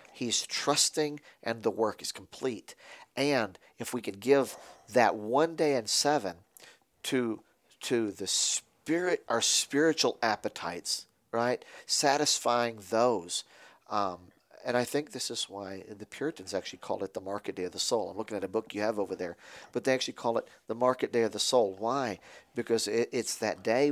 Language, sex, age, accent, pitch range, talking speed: English, male, 40-59, American, 105-130 Hz, 180 wpm